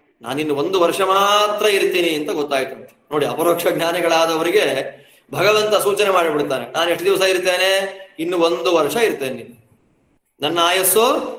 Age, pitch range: 30-49, 155-195 Hz